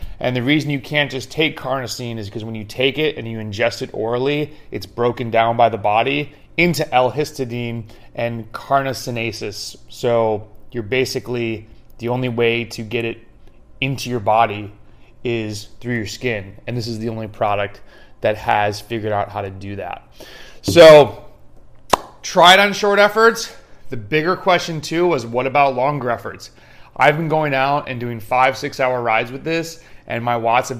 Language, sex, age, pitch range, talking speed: English, male, 30-49, 115-140 Hz, 175 wpm